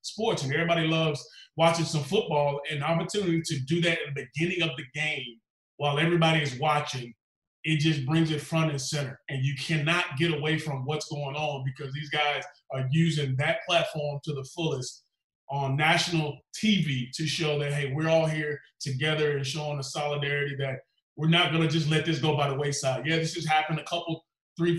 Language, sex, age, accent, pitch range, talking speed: English, male, 20-39, American, 140-160 Hz, 200 wpm